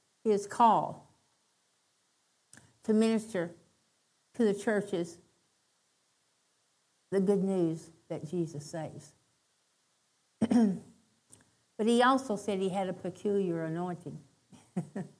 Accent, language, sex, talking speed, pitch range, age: American, English, female, 85 wpm, 195-235 Hz, 60-79